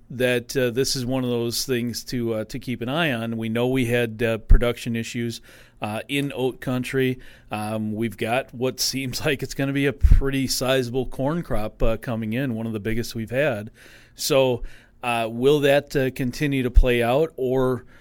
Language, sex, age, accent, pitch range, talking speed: English, male, 40-59, American, 115-135 Hz, 200 wpm